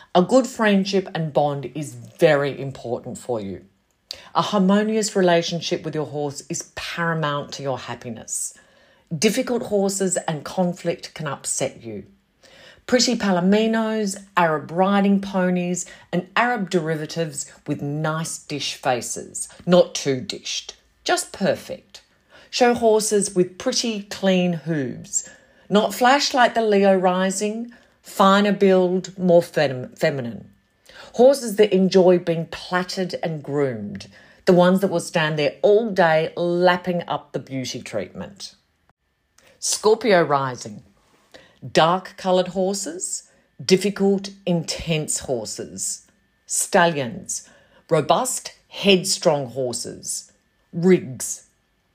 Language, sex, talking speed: English, female, 110 wpm